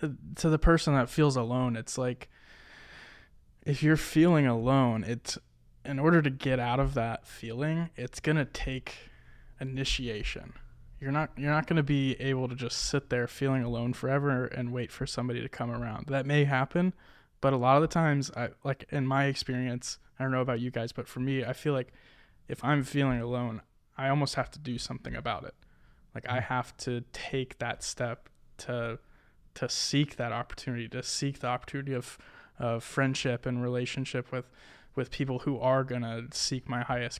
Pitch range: 120-140 Hz